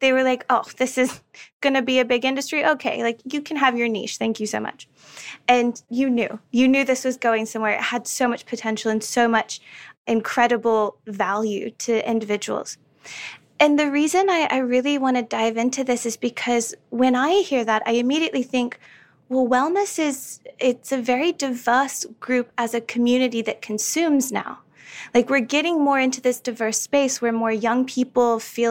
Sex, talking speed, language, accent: female, 190 wpm, English, American